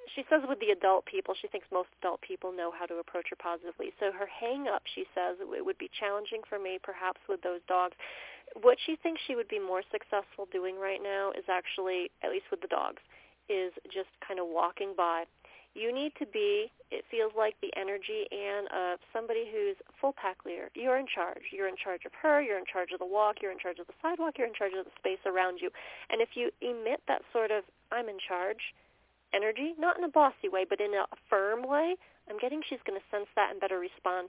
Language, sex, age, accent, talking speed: English, female, 30-49, American, 230 wpm